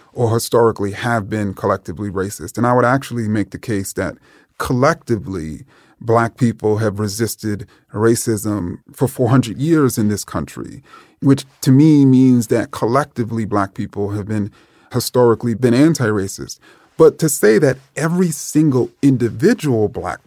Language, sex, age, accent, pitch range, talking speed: English, male, 30-49, American, 115-150 Hz, 140 wpm